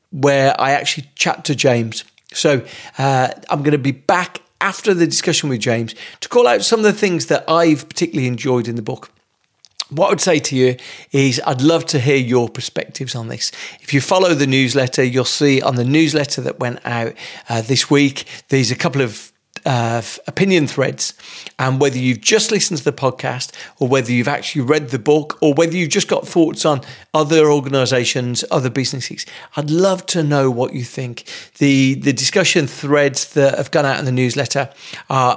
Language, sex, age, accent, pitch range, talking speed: English, male, 40-59, British, 125-150 Hz, 195 wpm